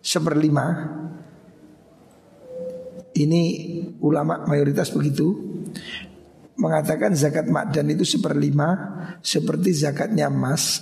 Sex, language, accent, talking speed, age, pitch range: male, Indonesian, native, 80 wpm, 50-69, 150-190 Hz